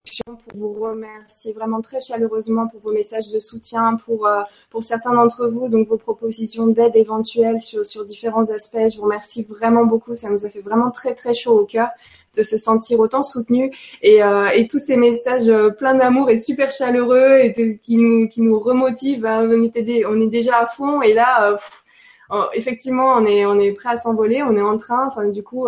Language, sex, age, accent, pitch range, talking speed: French, female, 20-39, French, 215-235 Hz, 215 wpm